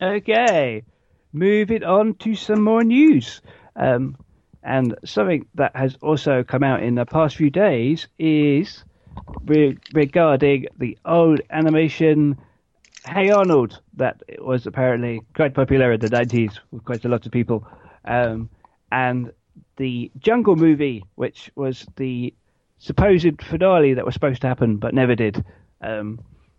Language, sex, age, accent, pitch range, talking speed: English, male, 40-59, British, 125-155 Hz, 140 wpm